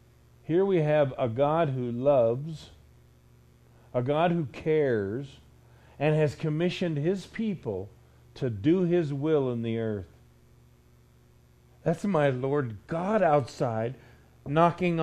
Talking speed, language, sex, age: 115 wpm, English, male, 50-69